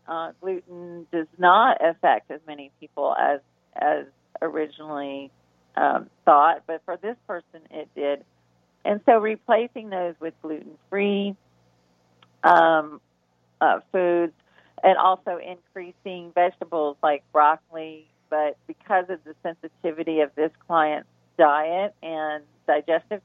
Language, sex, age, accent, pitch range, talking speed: English, female, 40-59, American, 145-175 Hz, 115 wpm